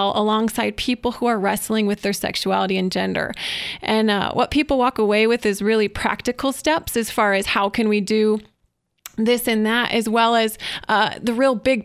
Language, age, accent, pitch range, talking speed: English, 20-39, American, 200-245 Hz, 190 wpm